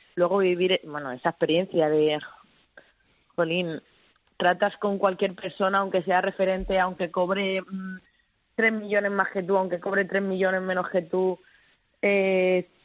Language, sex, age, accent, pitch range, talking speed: Spanish, female, 20-39, Spanish, 165-190 Hz, 135 wpm